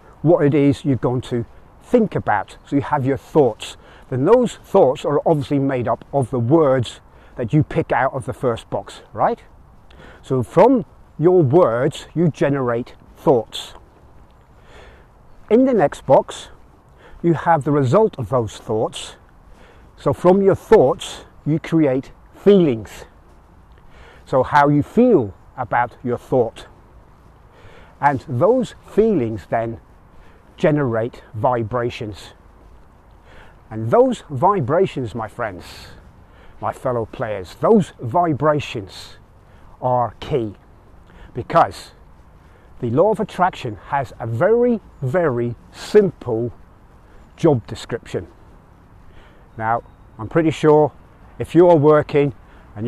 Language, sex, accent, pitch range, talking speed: English, male, British, 100-150 Hz, 115 wpm